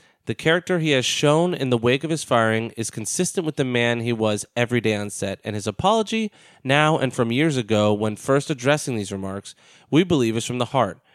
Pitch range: 110-145 Hz